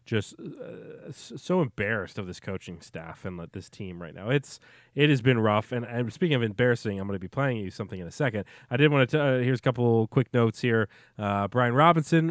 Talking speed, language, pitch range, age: 250 wpm, English, 95-125 Hz, 30-49